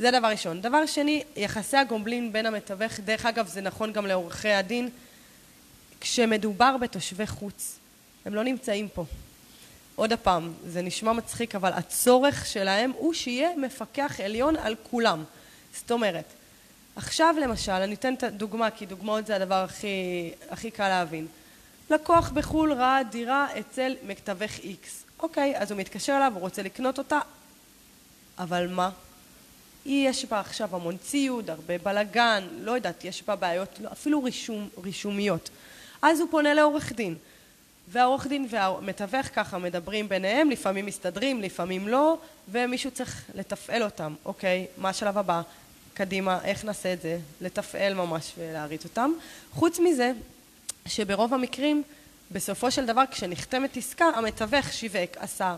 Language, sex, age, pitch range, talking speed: Hebrew, female, 20-39, 190-260 Hz, 140 wpm